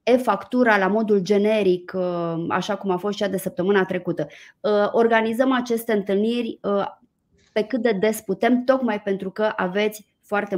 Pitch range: 190-230 Hz